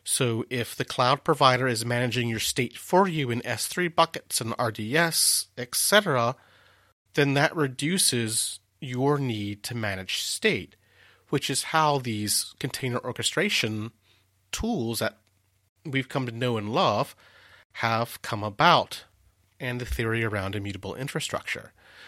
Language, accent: English, American